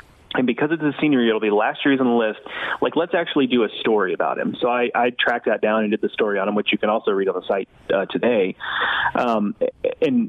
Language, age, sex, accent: English, 30-49, male, American